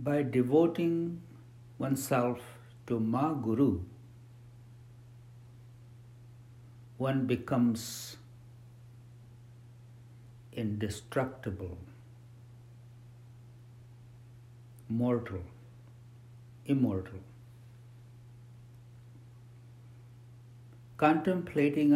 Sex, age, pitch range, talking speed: male, 60-79, 115-120 Hz, 35 wpm